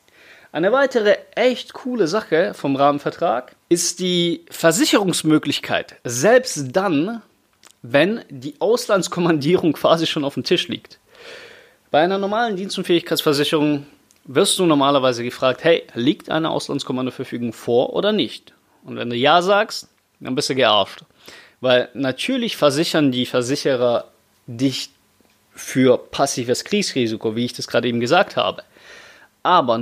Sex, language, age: male, German, 30-49